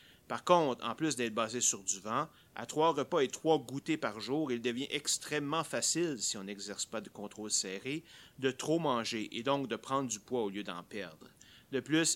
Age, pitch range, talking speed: 30-49, 115-145 Hz, 210 wpm